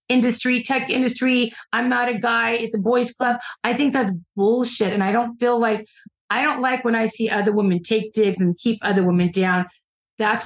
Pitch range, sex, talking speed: 175-220 Hz, female, 205 wpm